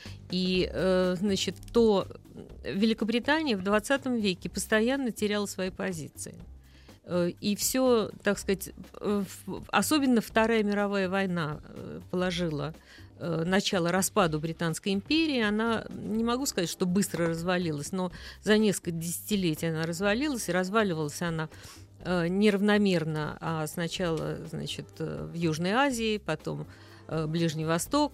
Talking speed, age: 105 wpm, 50-69